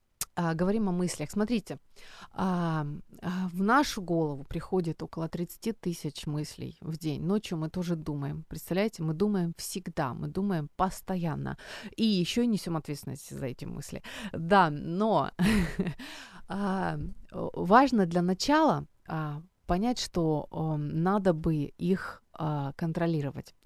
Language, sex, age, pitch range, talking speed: Ukrainian, female, 30-49, 160-205 Hz, 110 wpm